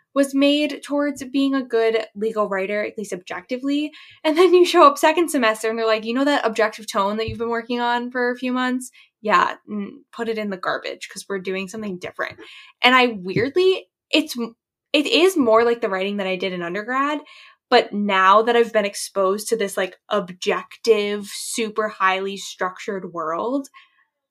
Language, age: English, 10-29